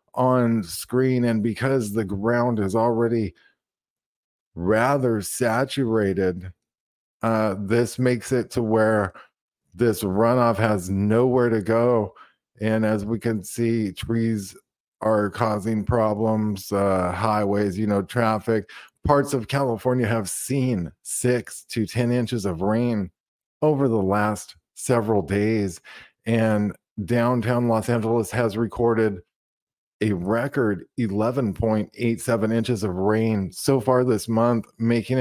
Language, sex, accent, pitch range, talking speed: English, male, American, 105-115 Hz, 120 wpm